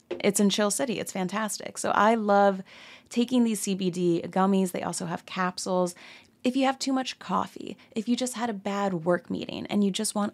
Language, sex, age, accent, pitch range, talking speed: English, female, 20-39, American, 185-230 Hz, 205 wpm